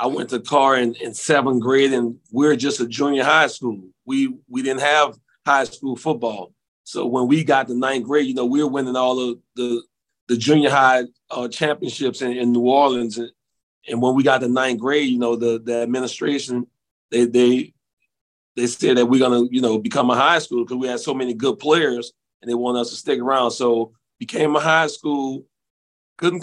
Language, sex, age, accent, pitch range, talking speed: English, male, 40-59, American, 120-145 Hz, 210 wpm